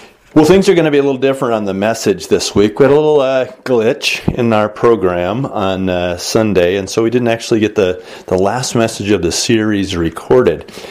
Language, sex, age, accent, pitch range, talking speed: English, male, 40-59, American, 95-120 Hz, 220 wpm